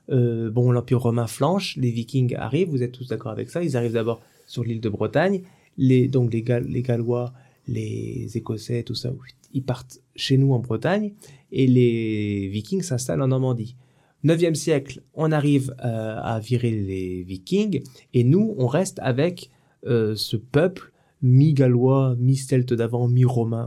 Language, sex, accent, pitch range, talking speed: French, male, French, 120-150 Hz, 160 wpm